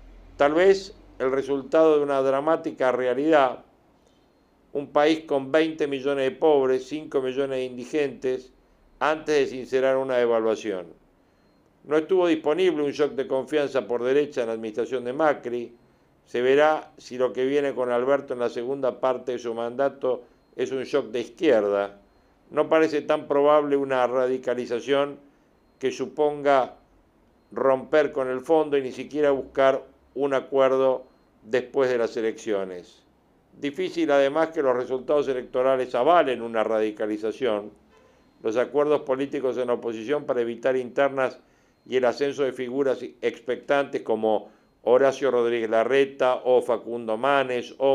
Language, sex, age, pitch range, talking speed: Spanish, male, 50-69, 125-145 Hz, 140 wpm